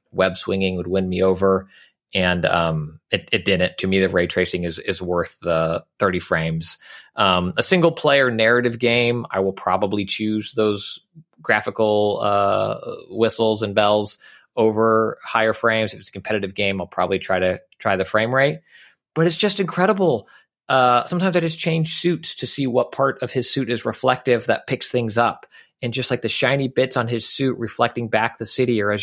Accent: American